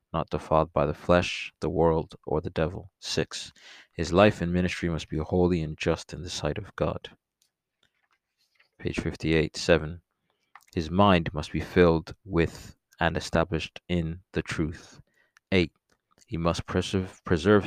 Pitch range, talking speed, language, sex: 80-90 Hz, 145 wpm, English, male